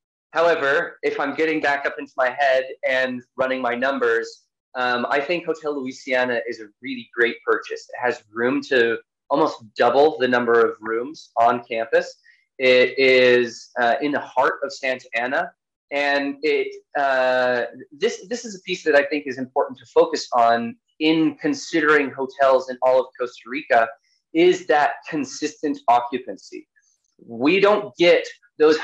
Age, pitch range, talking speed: 20-39, 125-175 Hz, 160 wpm